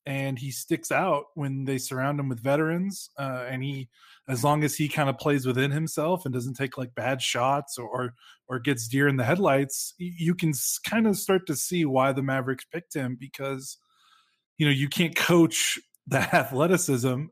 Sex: male